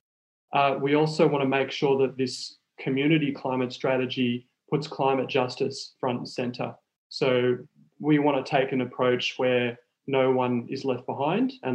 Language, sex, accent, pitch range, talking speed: English, male, Australian, 125-140 Hz, 165 wpm